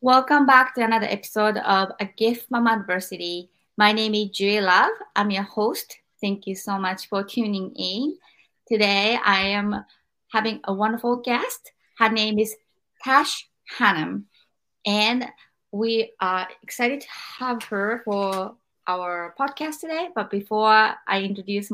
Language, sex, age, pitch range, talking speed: English, female, 20-39, 195-230 Hz, 145 wpm